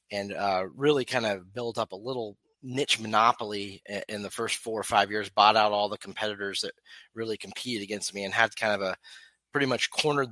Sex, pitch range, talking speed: male, 105-130 Hz, 210 wpm